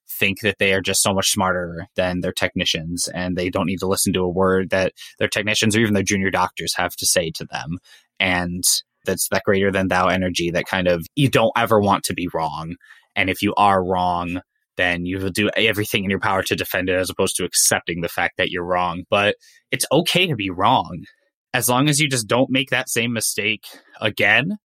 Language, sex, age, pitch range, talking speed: English, male, 20-39, 95-125 Hz, 225 wpm